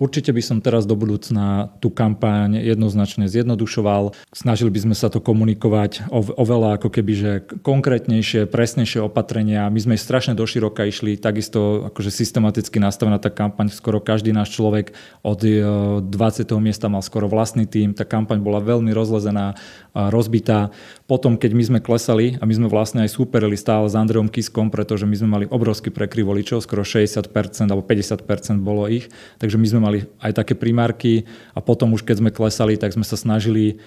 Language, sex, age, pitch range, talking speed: Slovak, male, 30-49, 105-115 Hz, 165 wpm